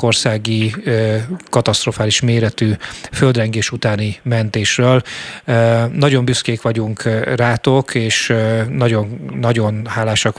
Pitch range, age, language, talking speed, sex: 110-120 Hz, 30-49, Hungarian, 80 wpm, male